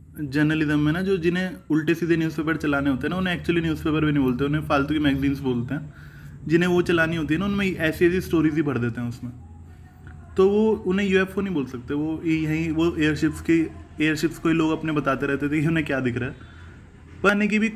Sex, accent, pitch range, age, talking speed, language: male, native, 135-175 Hz, 20-39, 230 wpm, Hindi